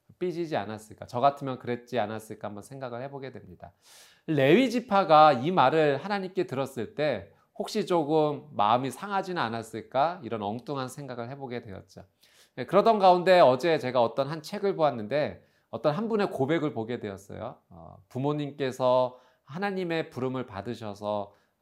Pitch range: 110-160 Hz